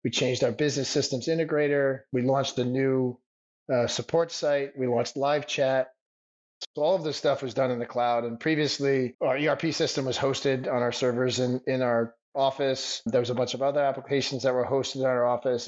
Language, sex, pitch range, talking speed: English, male, 125-140 Hz, 205 wpm